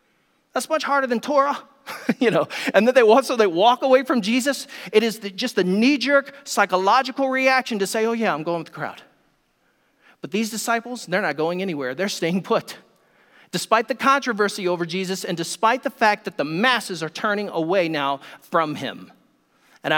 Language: English